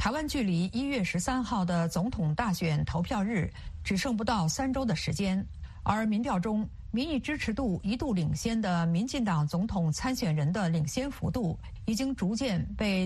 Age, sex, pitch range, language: 50-69, female, 170-235 Hz, Chinese